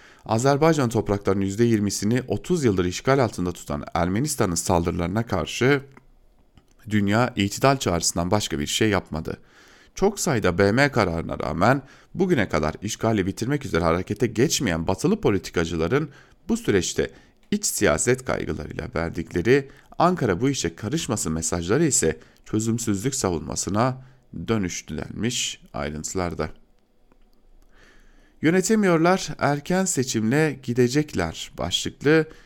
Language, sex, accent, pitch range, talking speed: German, male, Turkish, 90-135 Hz, 100 wpm